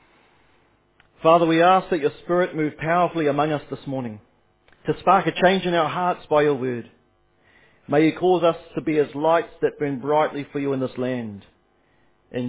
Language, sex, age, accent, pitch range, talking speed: English, male, 40-59, Australian, 135-190 Hz, 185 wpm